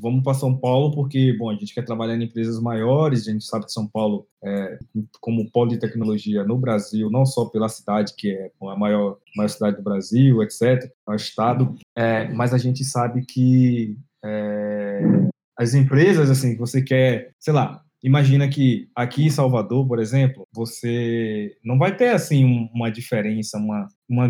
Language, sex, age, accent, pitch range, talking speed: English, male, 20-39, Brazilian, 110-130 Hz, 180 wpm